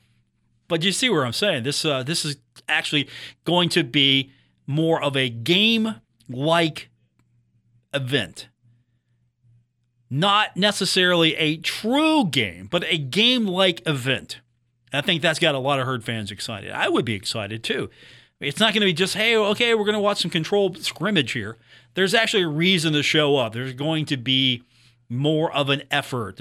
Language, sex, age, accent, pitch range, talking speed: English, male, 40-59, American, 120-170 Hz, 170 wpm